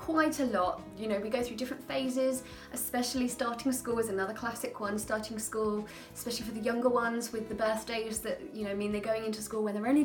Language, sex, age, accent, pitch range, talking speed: English, female, 20-39, British, 195-255 Hz, 225 wpm